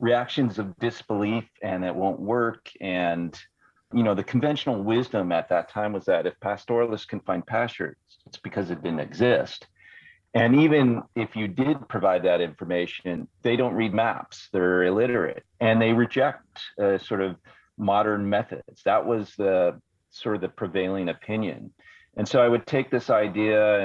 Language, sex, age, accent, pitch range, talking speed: English, male, 40-59, American, 95-120 Hz, 165 wpm